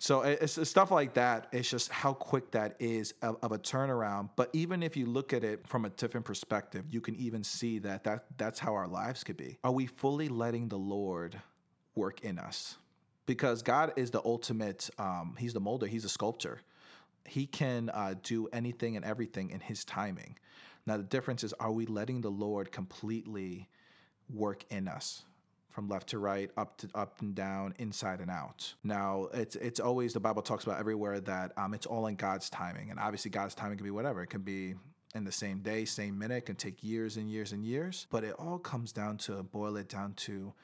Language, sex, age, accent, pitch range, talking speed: English, male, 30-49, American, 100-120 Hz, 210 wpm